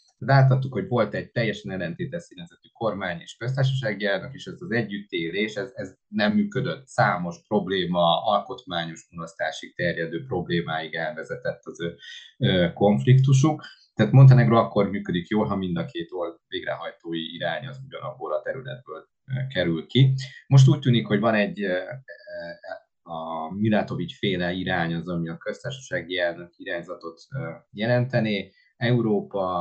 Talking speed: 130 wpm